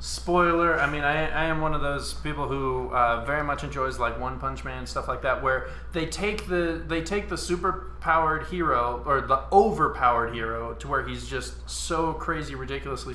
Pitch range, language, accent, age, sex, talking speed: 115-150 Hz, English, American, 20-39, male, 200 wpm